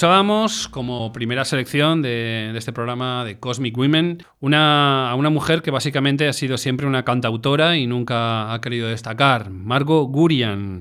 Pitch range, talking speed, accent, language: 115-145 Hz, 155 wpm, Spanish, Spanish